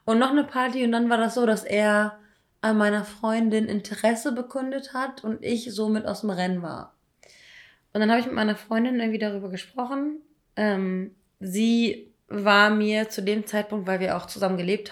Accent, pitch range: German, 200-230 Hz